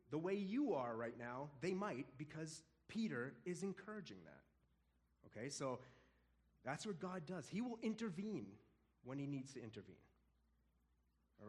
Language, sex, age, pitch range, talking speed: English, male, 30-49, 105-160 Hz, 145 wpm